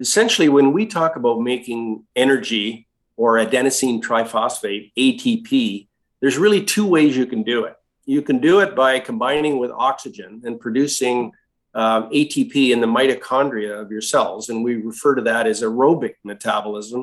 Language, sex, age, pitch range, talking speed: English, male, 50-69, 115-155 Hz, 160 wpm